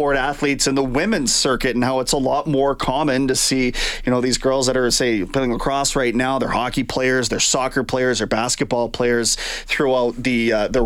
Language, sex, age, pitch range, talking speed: English, male, 30-49, 120-145 Hz, 210 wpm